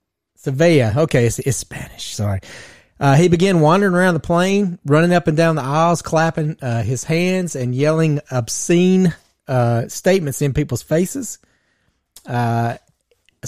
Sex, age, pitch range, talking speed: male, 30-49, 130-165 Hz, 140 wpm